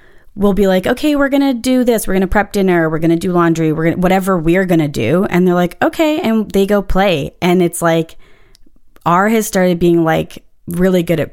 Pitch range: 170-245 Hz